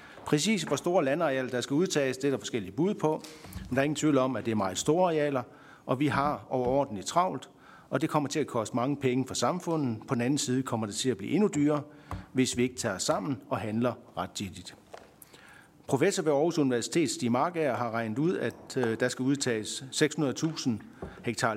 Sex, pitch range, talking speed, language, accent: male, 120-150 Hz, 205 wpm, Danish, native